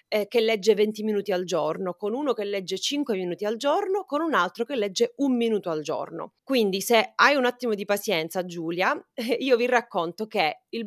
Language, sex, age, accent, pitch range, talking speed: Italian, female, 30-49, native, 200-260 Hz, 200 wpm